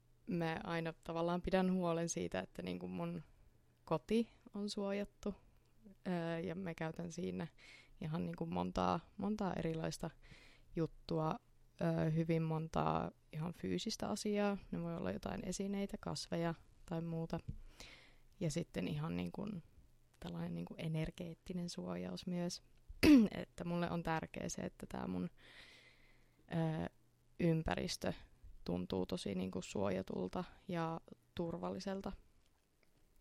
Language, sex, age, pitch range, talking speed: Finnish, female, 20-39, 160-185 Hz, 110 wpm